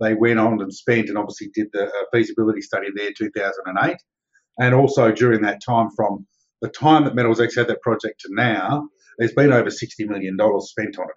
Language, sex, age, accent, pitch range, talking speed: English, male, 50-69, Australian, 110-130 Hz, 205 wpm